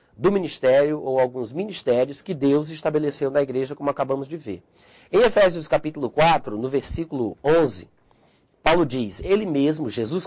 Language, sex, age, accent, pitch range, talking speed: Portuguese, male, 40-59, Brazilian, 135-180 Hz, 150 wpm